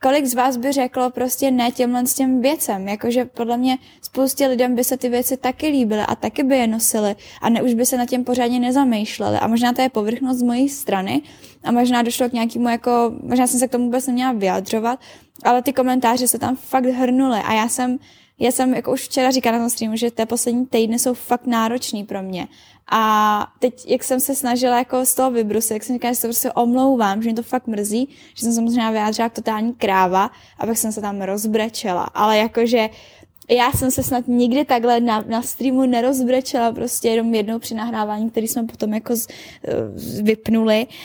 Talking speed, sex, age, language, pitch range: 205 wpm, female, 10-29, Czech, 225-255 Hz